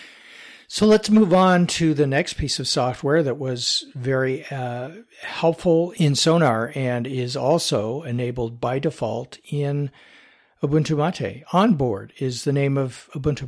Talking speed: 140 wpm